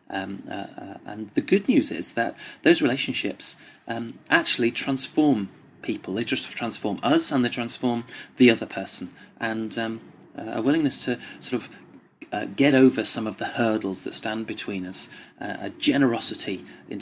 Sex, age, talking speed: male, 30-49, 170 wpm